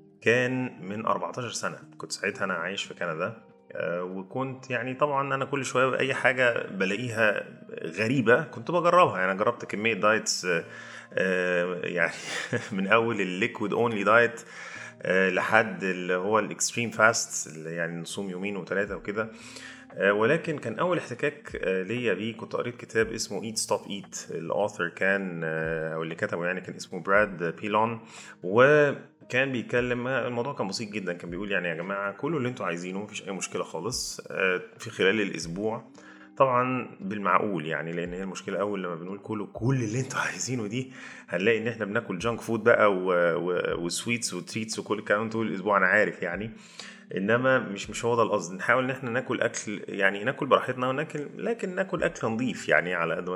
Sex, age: male, 30-49